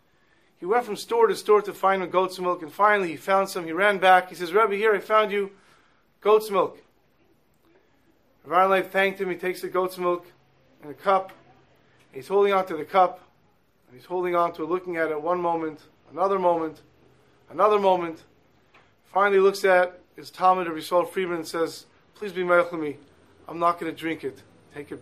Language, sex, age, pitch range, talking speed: English, male, 40-59, 165-200 Hz, 200 wpm